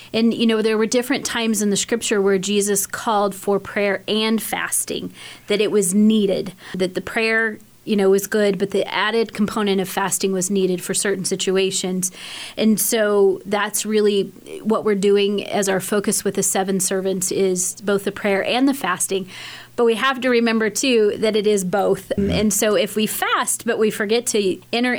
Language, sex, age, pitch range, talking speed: English, female, 30-49, 195-225 Hz, 190 wpm